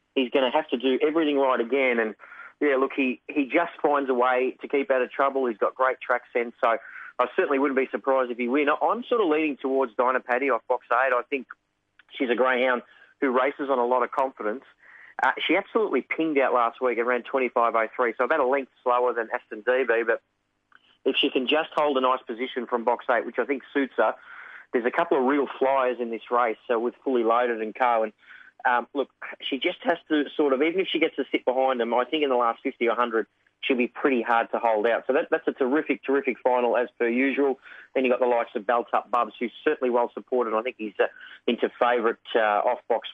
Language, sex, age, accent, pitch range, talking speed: English, male, 40-59, Australian, 120-140 Hz, 240 wpm